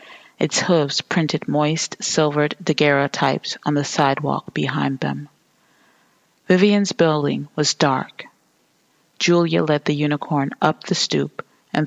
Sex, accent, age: female, American, 40-59